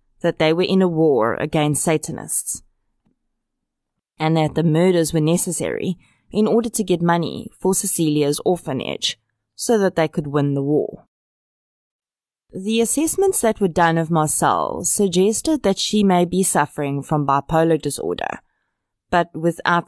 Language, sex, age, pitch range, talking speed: English, female, 20-39, 155-195 Hz, 140 wpm